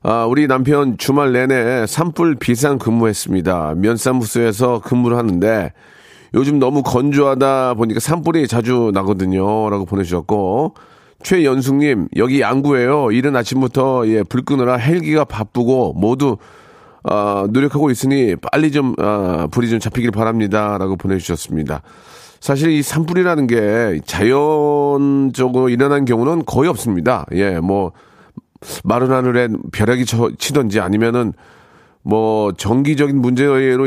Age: 40-59